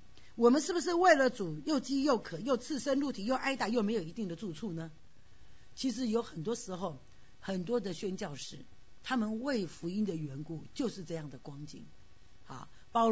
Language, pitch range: Chinese, 195-305 Hz